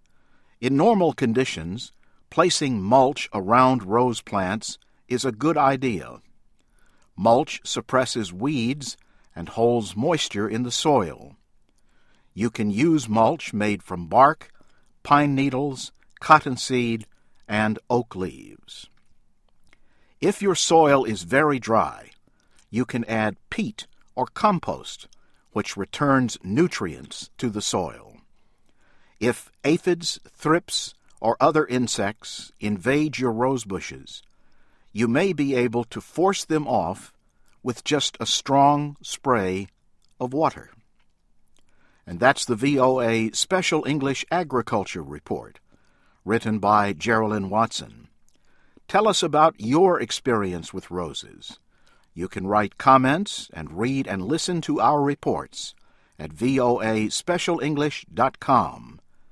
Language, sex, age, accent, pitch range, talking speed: English, male, 60-79, American, 105-145 Hz, 110 wpm